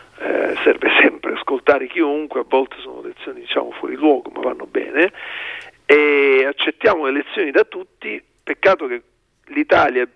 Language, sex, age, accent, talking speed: Italian, male, 50-69, native, 155 wpm